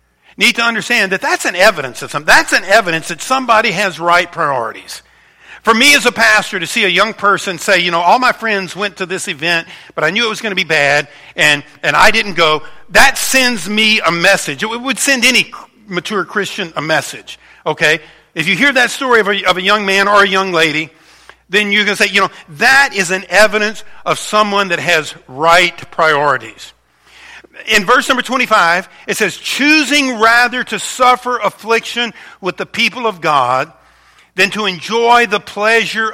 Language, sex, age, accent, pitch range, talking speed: English, male, 50-69, American, 155-220 Hz, 195 wpm